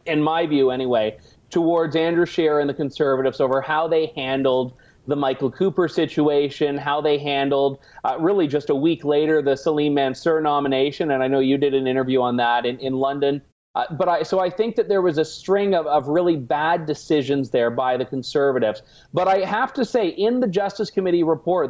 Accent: American